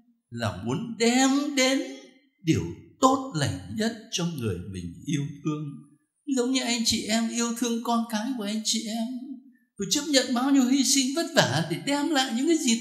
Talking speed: 190 wpm